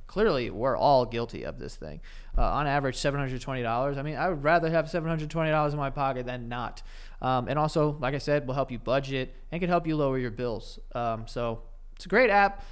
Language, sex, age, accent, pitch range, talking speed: English, male, 20-39, American, 120-150 Hz, 215 wpm